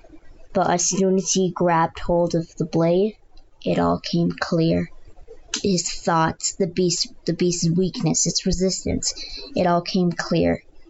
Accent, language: American, English